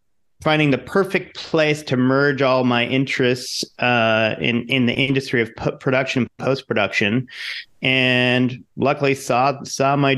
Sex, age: male, 30-49